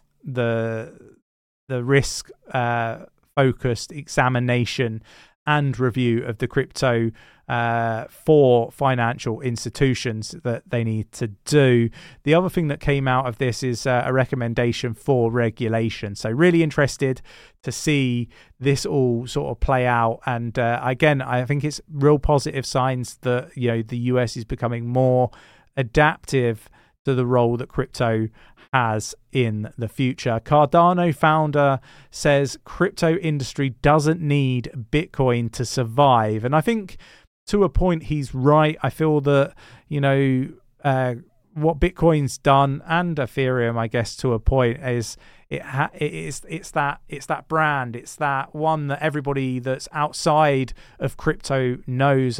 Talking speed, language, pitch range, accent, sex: 140 wpm, English, 120-150 Hz, British, male